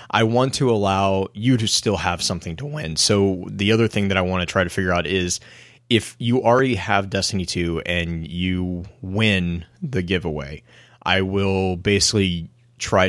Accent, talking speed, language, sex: American, 180 wpm, English, male